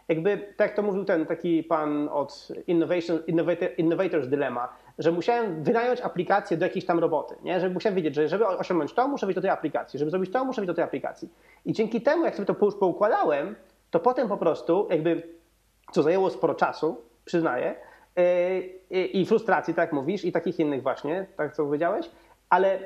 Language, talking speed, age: Polish, 195 wpm, 30-49